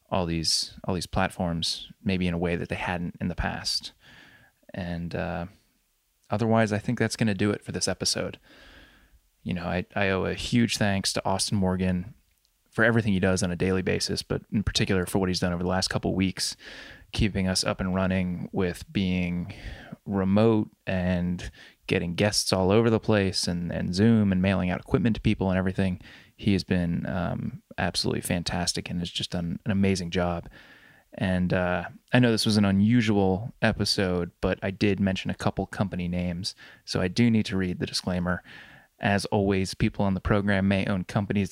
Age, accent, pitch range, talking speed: 20-39, American, 90-105 Hz, 190 wpm